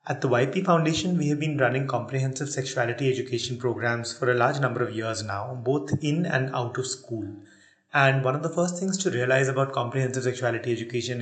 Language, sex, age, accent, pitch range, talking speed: English, male, 30-49, Indian, 125-150 Hz, 200 wpm